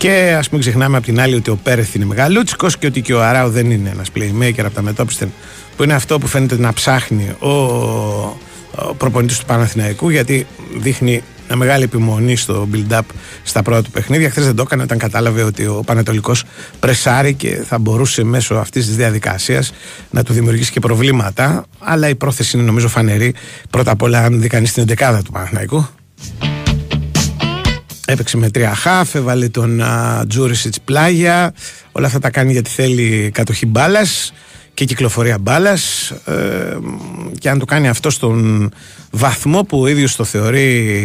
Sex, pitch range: male, 110-130 Hz